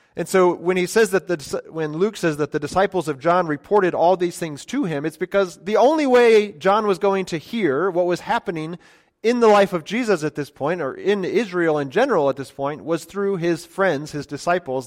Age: 30-49